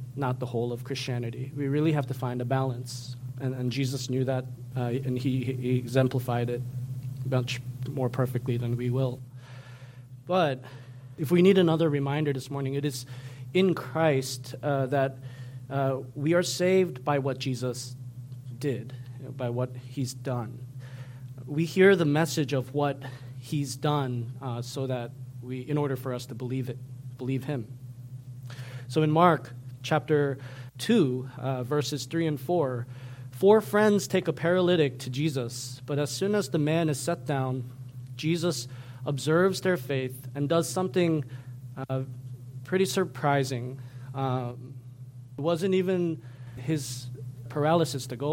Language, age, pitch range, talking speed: English, 30-49, 125-145 Hz, 150 wpm